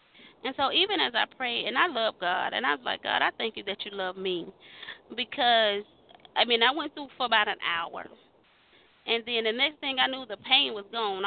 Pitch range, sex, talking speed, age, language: 190-250 Hz, female, 230 wpm, 20-39, English